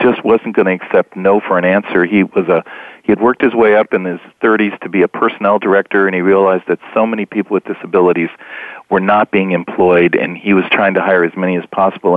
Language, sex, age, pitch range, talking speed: English, male, 40-59, 90-110 Hz, 240 wpm